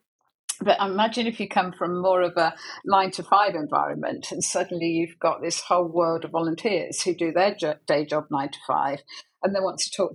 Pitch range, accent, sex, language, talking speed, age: 170-195 Hz, British, female, English, 185 wpm, 50-69